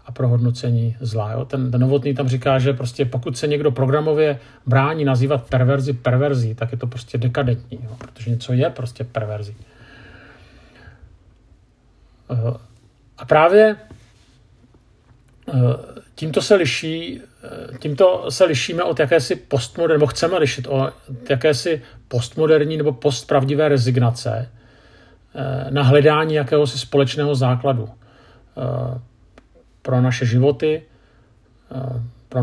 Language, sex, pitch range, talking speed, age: Czech, male, 120-145 Hz, 105 wpm, 50-69